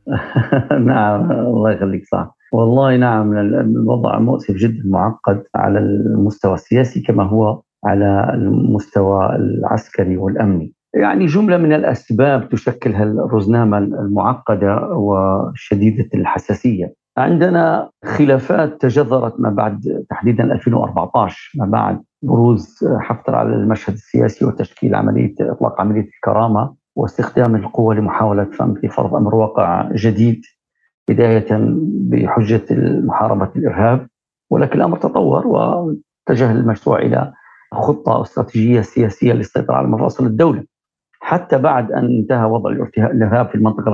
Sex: male